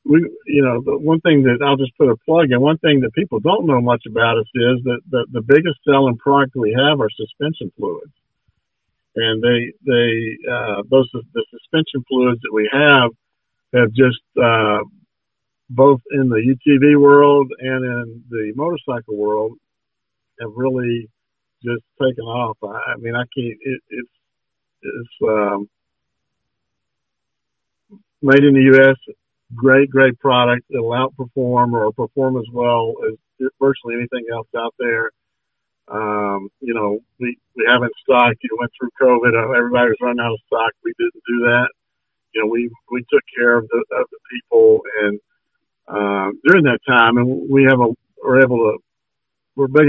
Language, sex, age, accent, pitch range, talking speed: English, male, 50-69, American, 115-140 Hz, 170 wpm